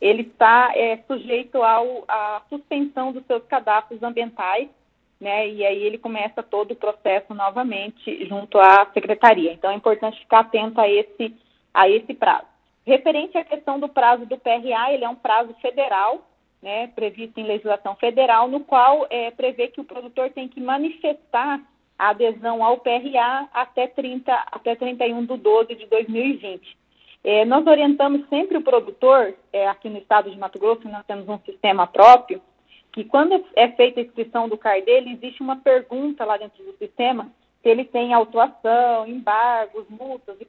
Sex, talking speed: female, 165 wpm